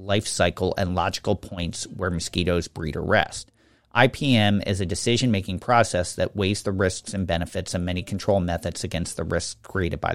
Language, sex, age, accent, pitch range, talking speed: English, male, 40-59, American, 95-115 Hz, 175 wpm